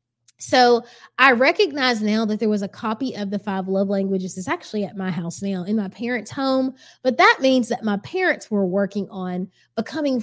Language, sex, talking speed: English, female, 200 wpm